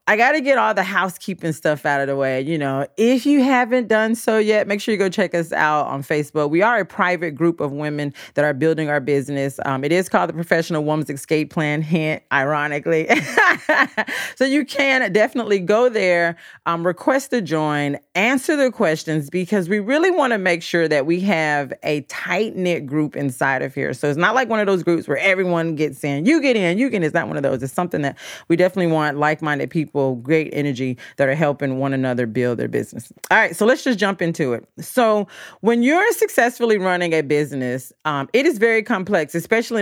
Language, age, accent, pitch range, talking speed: English, 30-49, American, 150-210 Hz, 215 wpm